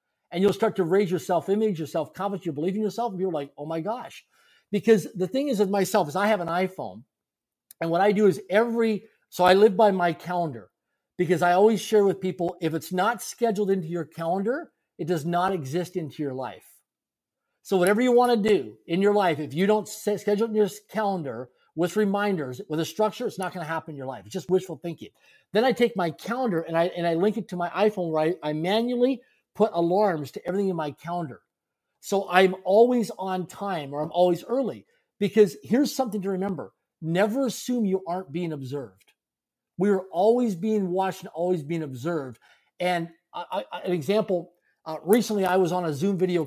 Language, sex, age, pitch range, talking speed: English, male, 50-69, 165-210 Hz, 210 wpm